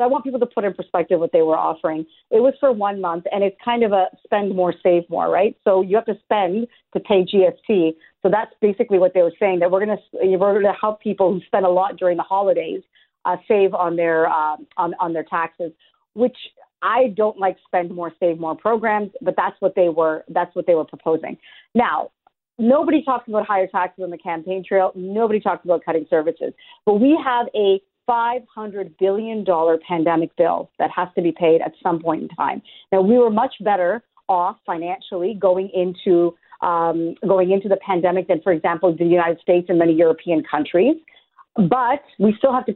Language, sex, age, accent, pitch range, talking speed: English, female, 40-59, American, 175-220 Hz, 210 wpm